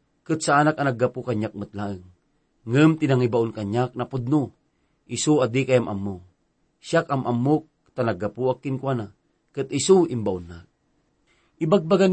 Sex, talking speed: male, 140 wpm